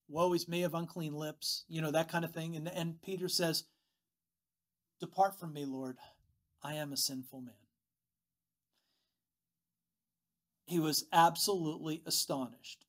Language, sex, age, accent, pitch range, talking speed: English, male, 50-69, American, 145-210 Hz, 135 wpm